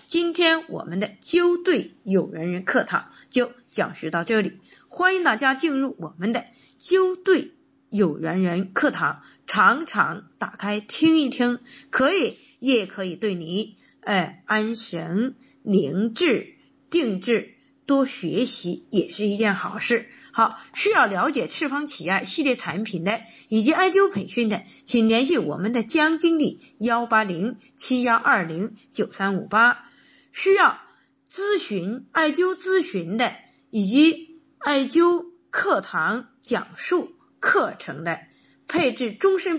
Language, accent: Chinese, native